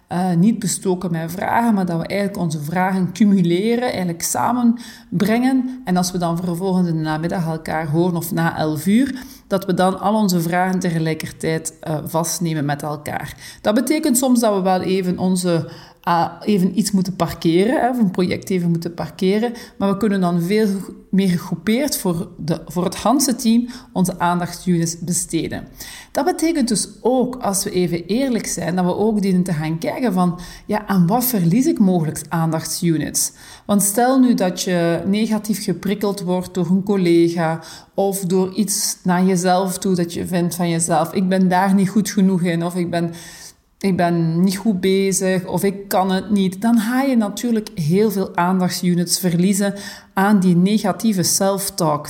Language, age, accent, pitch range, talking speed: Dutch, 40-59, Dutch, 170-215 Hz, 175 wpm